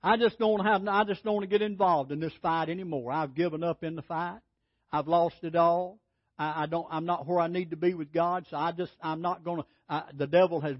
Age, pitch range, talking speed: 60-79, 180-275 Hz, 260 wpm